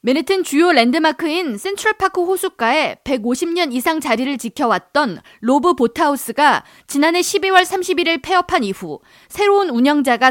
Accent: native